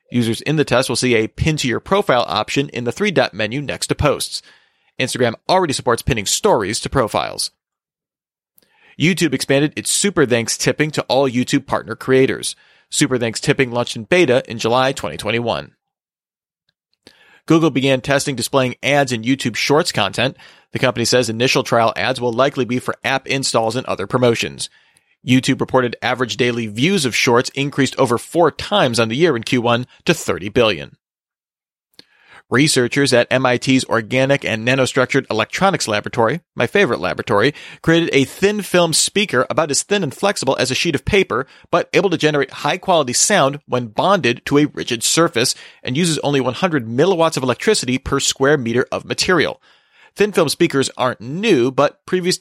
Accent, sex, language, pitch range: American, male, English, 120-150 Hz